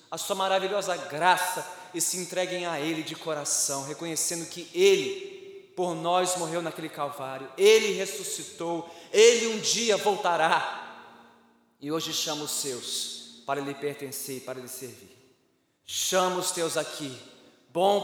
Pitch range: 130-190 Hz